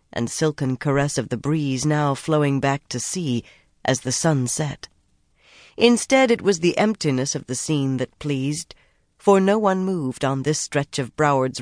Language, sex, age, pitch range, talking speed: English, female, 40-59, 135-180 Hz, 175 wpm